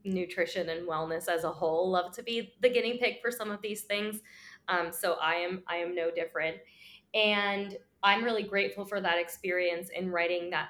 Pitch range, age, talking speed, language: 165-190 Hz, 20-39, 195 wpm, English